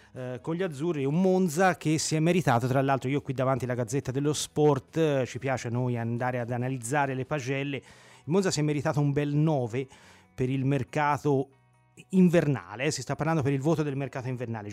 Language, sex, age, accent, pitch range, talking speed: Italian, male, 30-49, native, 120-150 Hz, 200 wpm